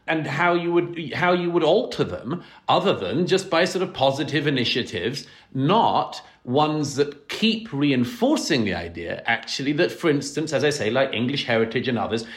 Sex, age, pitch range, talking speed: male, 40-59, 135-190 Hz, 175 wpm